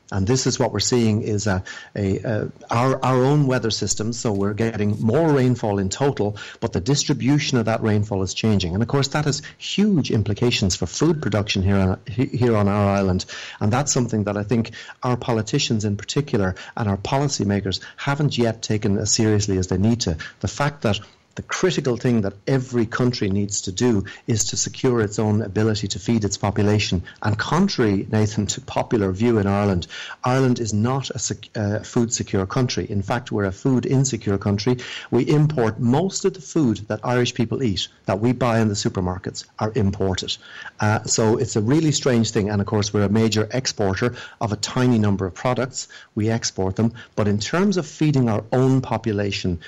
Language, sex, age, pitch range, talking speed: English, male, 40-59, 105-125 Hz, 195 wpm